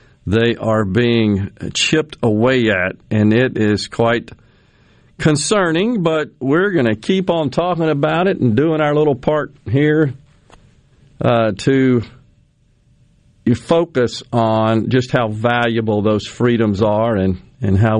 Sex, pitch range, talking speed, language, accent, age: male, 110-140 Hz, 130 wpm, English, American, 50-69